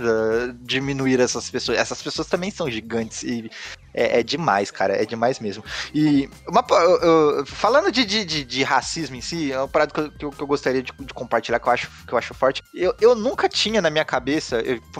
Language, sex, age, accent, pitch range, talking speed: Portuguese, male, 20-39, Brazilian, 135-185 Hz, 210 wpm